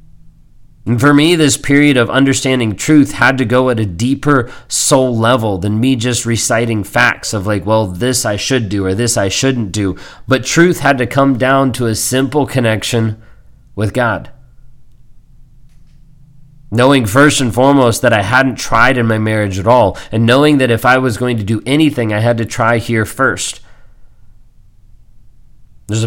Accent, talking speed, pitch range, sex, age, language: American, 175 wpm, 110-130 Hz, male, 30-49, English